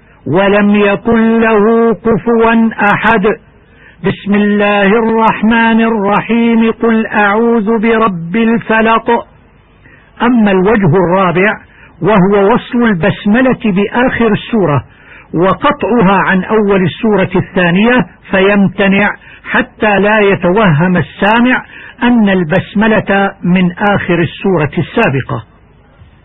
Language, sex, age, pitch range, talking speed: Arabic, male, 60-79, 195-230 Hz, 85 wpm